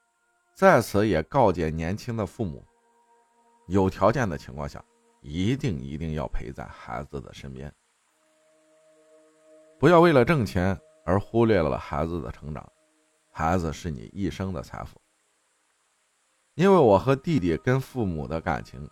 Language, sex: Chinese, male